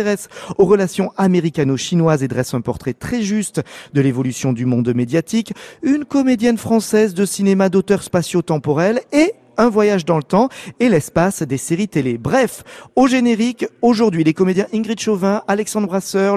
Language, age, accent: French, 40-59, French